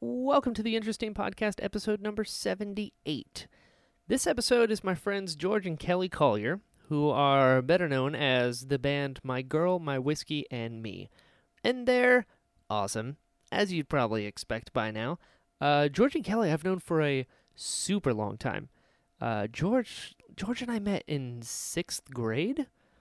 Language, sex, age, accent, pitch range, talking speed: English, male, 20-39, American, 130-200 Hz, 155 wpm